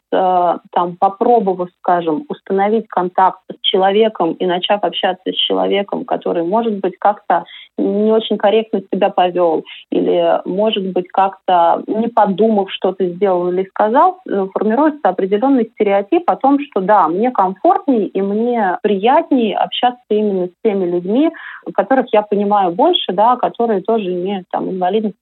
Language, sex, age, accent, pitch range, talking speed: Russian, female, 30-49, native, 190-235 Hz, 140 wpm